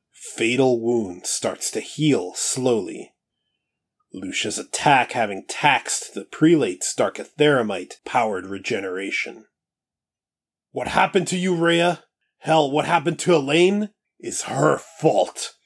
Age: 30-49